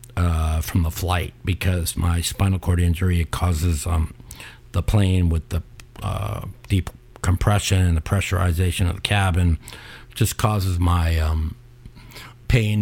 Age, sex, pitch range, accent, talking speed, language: 50-69, male, 85-115 Hz, American, 140 wpm, English